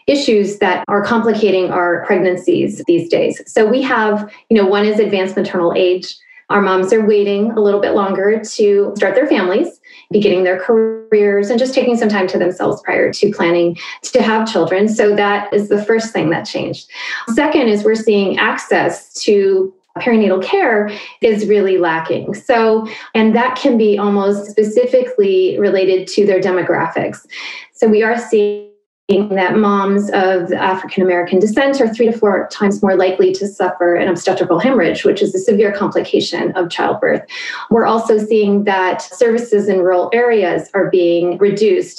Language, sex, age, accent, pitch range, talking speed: English, female, 30-49, American, 185-235 Hz, 165 wpm